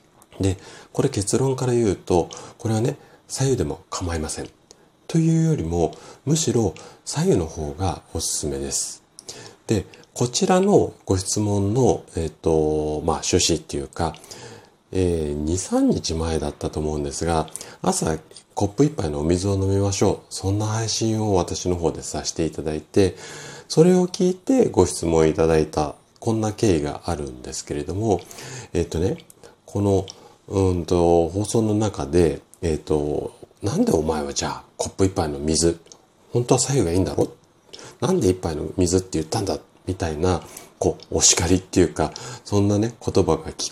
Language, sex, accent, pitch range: Japanese, male, native, 80-110 Hz